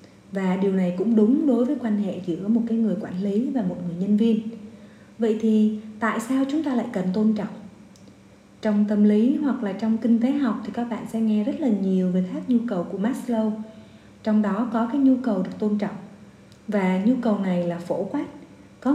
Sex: female